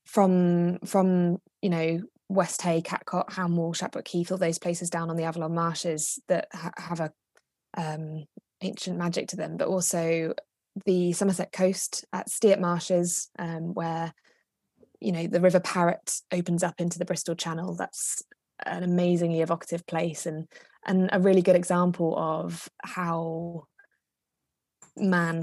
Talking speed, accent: 145 wpm, British